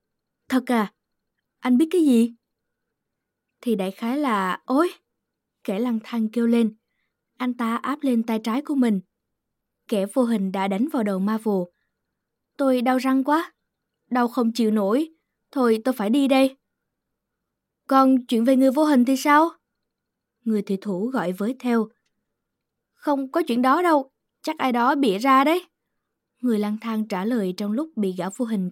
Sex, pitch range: female, 210-265 Hz